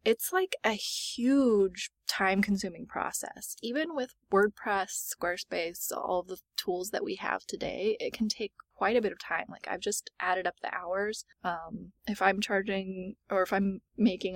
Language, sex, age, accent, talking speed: English, female, 20-39, American, 170 wpm